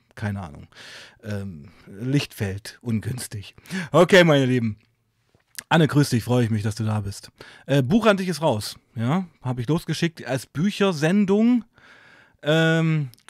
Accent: German